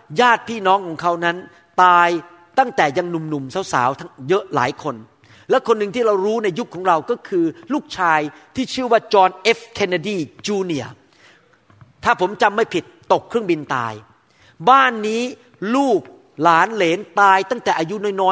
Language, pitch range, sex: Thai, 165-220 Hz, male